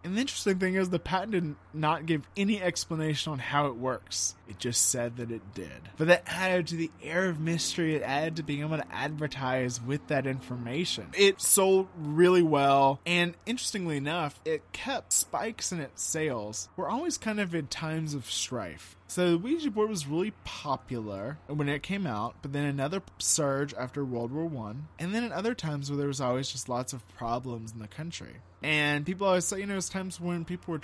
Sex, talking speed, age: male, 210 wpm, 20-39